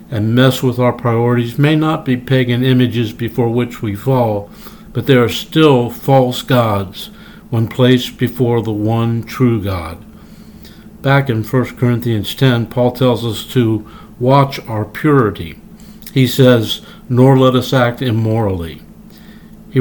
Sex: male